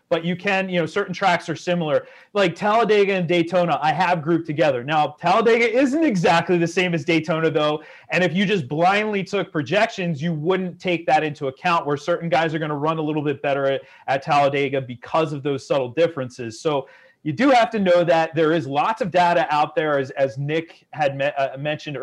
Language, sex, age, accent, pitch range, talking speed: English, male, 30-49, American, 135-175 Hz, 210 wpm